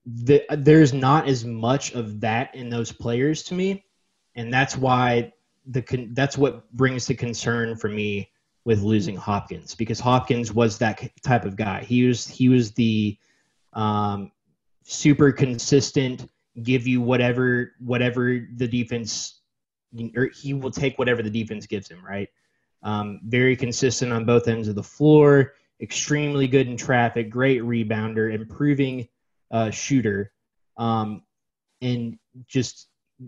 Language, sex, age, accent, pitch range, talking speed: English, male, 20-39, American, 110-130 Hz, 140 wpm